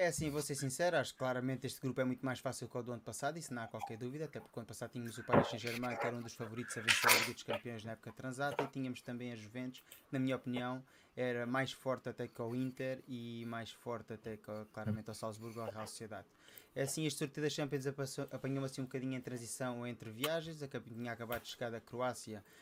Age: 20-39